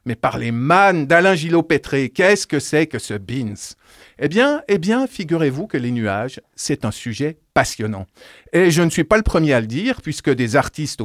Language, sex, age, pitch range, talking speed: French, male, 50-69, 120-175 Hz, 200 wpm